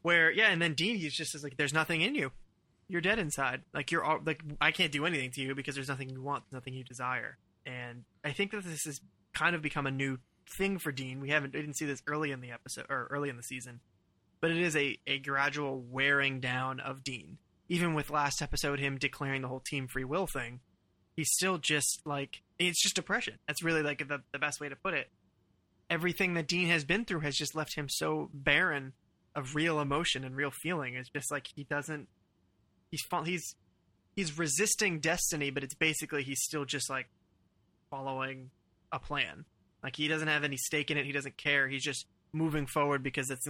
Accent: American